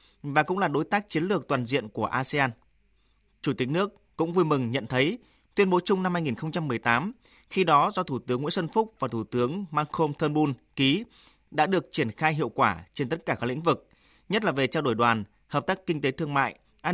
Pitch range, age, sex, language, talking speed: 130-170 Hz, 20-39, male, Vietnamese, 225 wpm